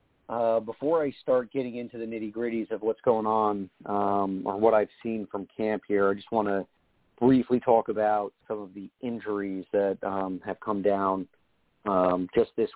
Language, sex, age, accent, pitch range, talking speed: English, male, 40-59, American, 95-110 Hz, 185 wpm